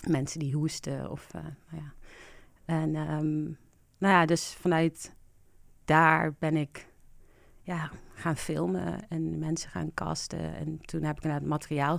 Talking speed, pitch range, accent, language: 145 wpm, 135-160 Hz, Dutch, Dutch